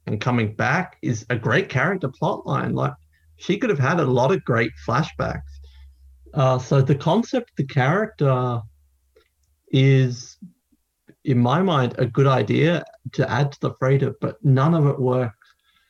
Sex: male